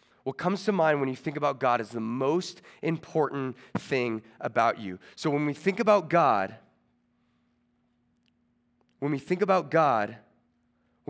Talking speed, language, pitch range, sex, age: 150 wpm, English, 120-180 Hz, male, 30-49